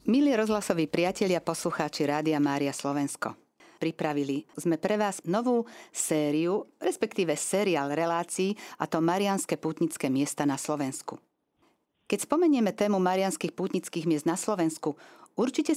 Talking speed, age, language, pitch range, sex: 120 wpm, 50-69, Slovak, 150-195 Hz, female